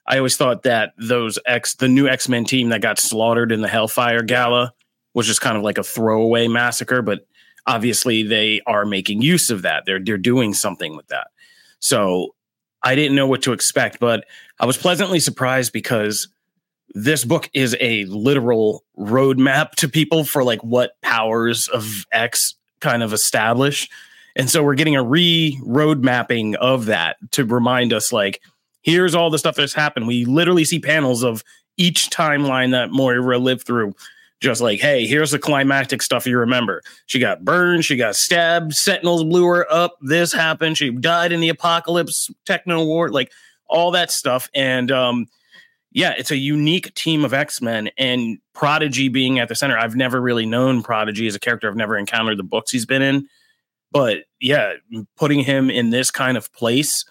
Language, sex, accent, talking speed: English, male, American, 180 wpm